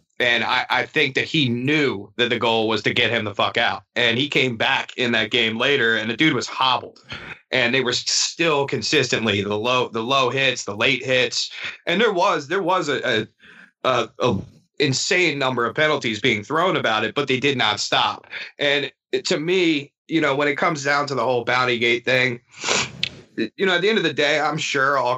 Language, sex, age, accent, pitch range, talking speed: English, male, 30-49, American, 115-140 Hz, 215 wpm